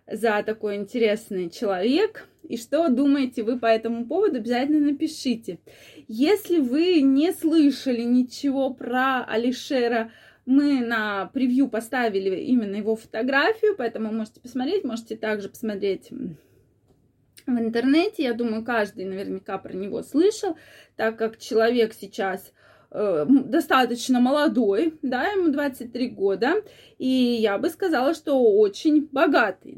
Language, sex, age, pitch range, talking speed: Russian, female, 20-39, 225-315 Hz, 120 wpm